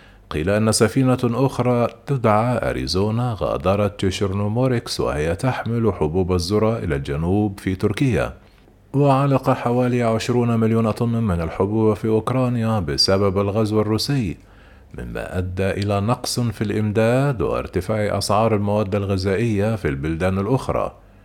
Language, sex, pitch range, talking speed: Arabic, male, 95-120 Hz, 115 wpm